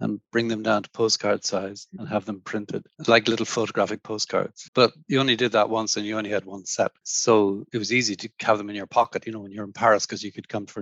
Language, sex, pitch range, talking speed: English, male, 105-125 Hz, 265 wpm